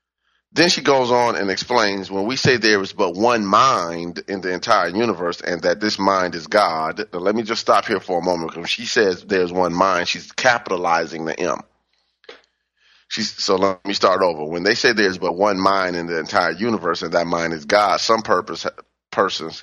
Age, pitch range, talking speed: 30-49, 85-105 Hz, 210 wpm